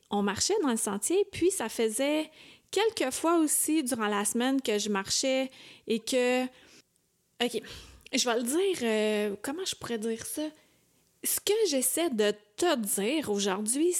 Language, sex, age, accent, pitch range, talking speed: French, female, 30-49, Canadian, 220-310 Hz, 160 wpm